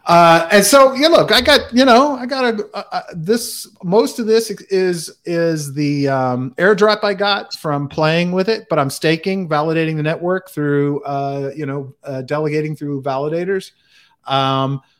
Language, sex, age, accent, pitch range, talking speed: English, male, 40-59, American, 140-180 Hz, 180 wpm